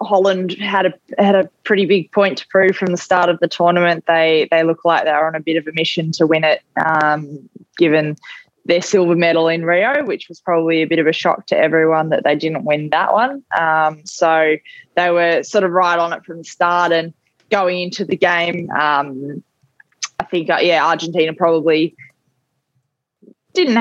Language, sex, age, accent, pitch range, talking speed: English, female, 20-39, Australian, 155-180 Hz, 195 wpm